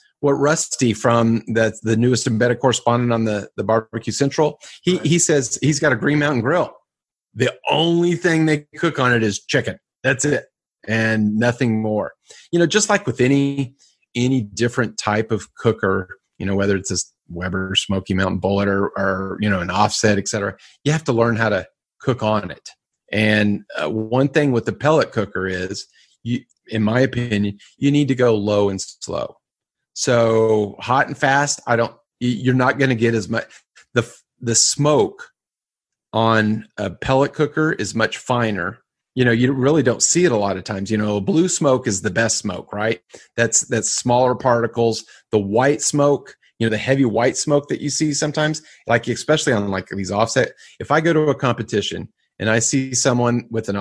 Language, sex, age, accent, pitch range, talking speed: English, male, 30-49, American, 105-135 Hz, 190 wpm